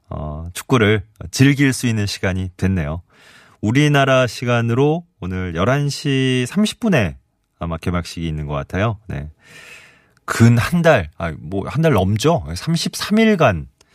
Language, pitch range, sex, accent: Korean, 85-125 Hz, male, native